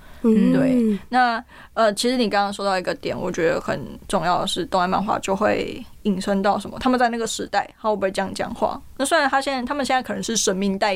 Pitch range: 185-230 Hz